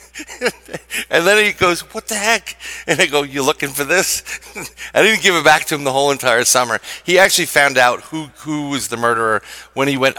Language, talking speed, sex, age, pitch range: English, 220 wpm, male, 40-59, 125-170 Hz